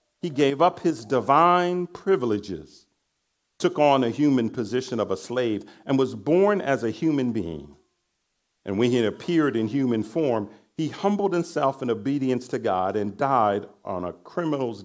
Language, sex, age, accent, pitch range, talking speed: English, male, 50-69, American, 105-165 Hz, 160 wpm